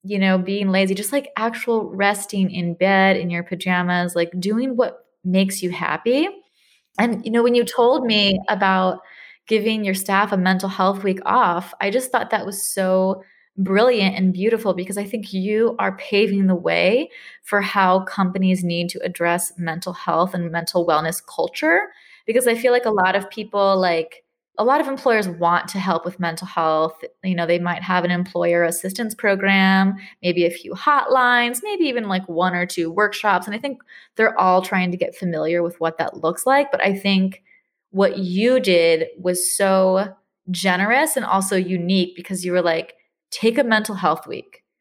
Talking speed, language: 185 wpm, English